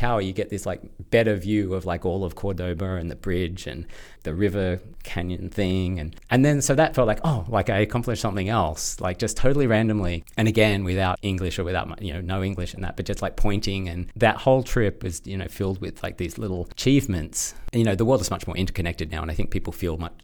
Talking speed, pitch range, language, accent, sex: 235 wpm, 85-105 Hz, English, Australian, male